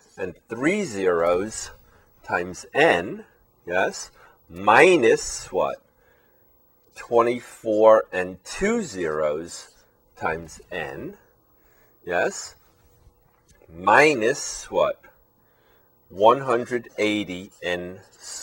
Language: English